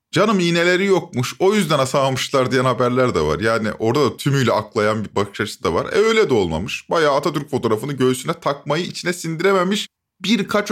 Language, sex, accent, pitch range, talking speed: Turkish, male, native, 120-170 Hz, 180 wpm